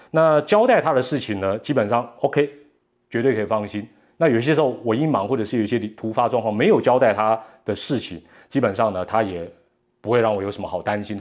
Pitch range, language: 105-135 Hz, Chinese